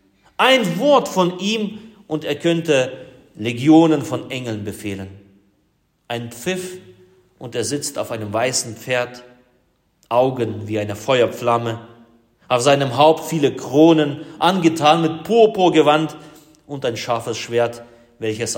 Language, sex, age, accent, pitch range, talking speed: German, male, 30-49, German, 105-145 Hz, 120 wpm